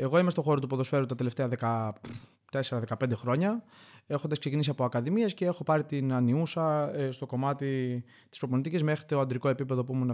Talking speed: 170 wpm